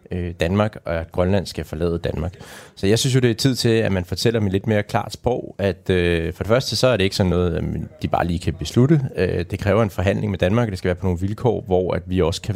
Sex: male